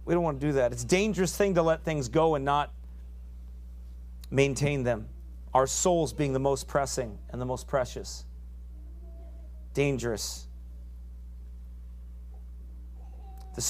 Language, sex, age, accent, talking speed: English, male, 40-59, American, 130 wpm